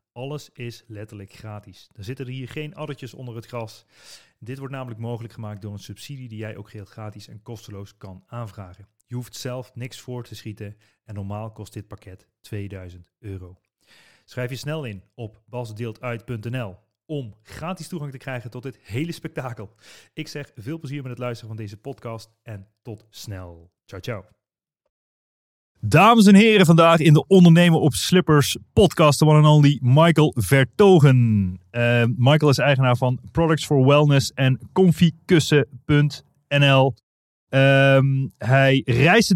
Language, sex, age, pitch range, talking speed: Dutch, male, 30-49, 110-155 Hz, 160 wpm